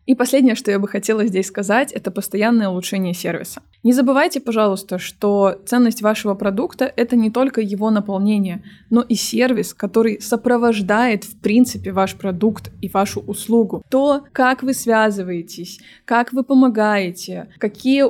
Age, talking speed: 20-39, 150 wpm